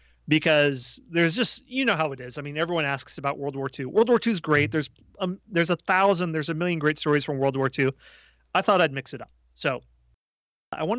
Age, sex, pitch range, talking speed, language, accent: 30-49, male, 135-165 Hz, 240 wpm, English, American